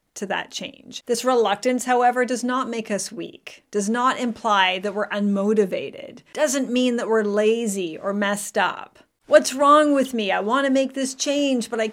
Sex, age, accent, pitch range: female, 30-49, American, 205-255 Hz